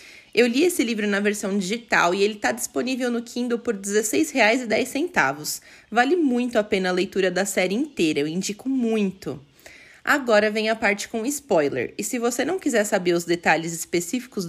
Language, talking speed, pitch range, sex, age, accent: Portuguese, 175 wpm, 195-260 Hz, female, 20-39, Brazilian